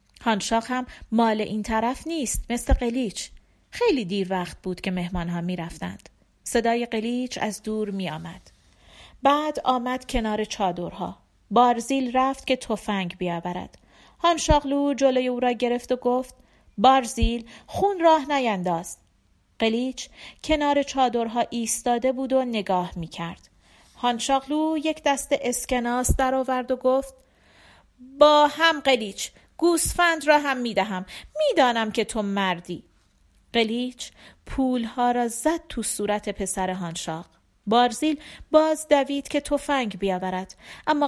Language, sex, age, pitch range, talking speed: Persian, female, 40-59, 200-275 Hz, 125 wpm